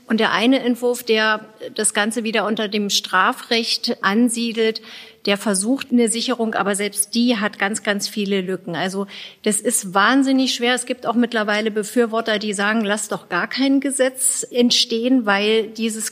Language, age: German, 40-59